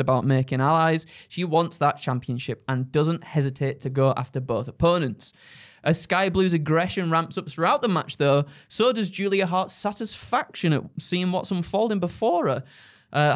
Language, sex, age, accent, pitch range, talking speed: English, male, 20-39, British, 135-175 Hz, 165 wpm